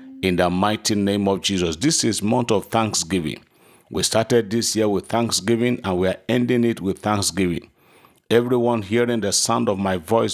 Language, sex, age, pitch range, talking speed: English, male, 50-69, 95-115 Hz, 180 wpm